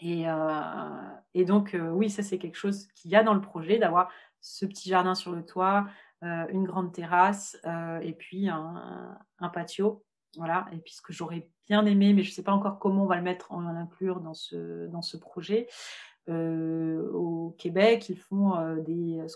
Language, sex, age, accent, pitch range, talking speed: French, female, 30-49, French, 170-200 Hz, 210 wpm